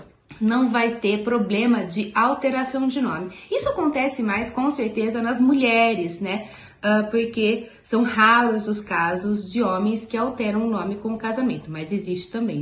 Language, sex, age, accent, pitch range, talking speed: Portuguese, female, 30-49, Brazilian, 200-260 Hz, 155 wpm